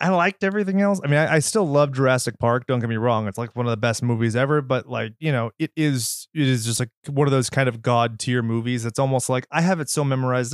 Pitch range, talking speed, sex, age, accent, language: 120-155 Hz, 285 wpm, male, 30-49, American, English